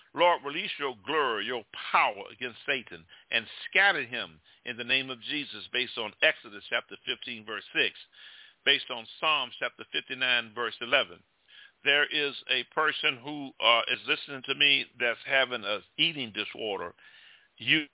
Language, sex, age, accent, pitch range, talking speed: English, male, 50-69, American, 125-150 Hz, 155 wpm